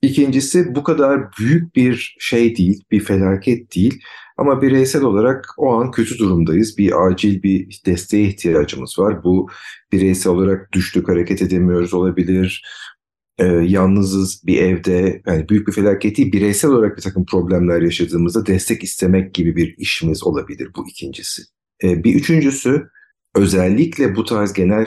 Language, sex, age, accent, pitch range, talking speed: Turkish, male, 50-69, native, 90-105 Hz, 145 wpm